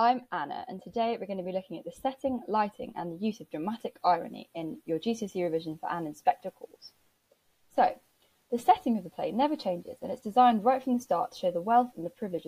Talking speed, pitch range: 235 wpm, 180-245 Hz